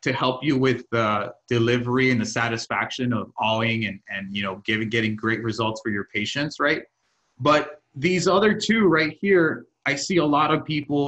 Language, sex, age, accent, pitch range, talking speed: English, male, 30-49, American, 125-170 Hz, 190 wpm